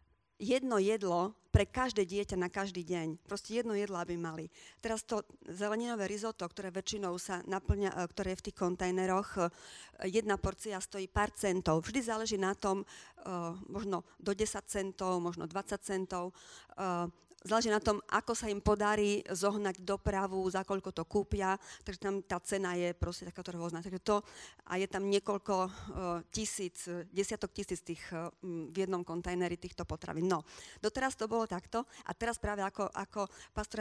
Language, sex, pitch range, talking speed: Slovak, female, 185-210 Hz, 160 wpm